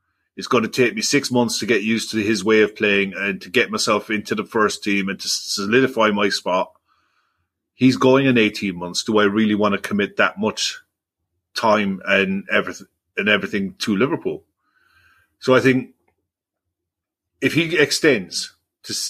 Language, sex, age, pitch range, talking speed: English, male, 30-49, 100-125 Hz, 170 wpm